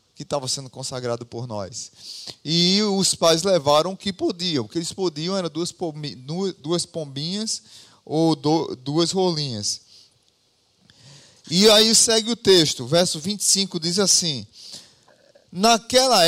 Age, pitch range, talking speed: 20-39, 150-220 Hz, 120 wpm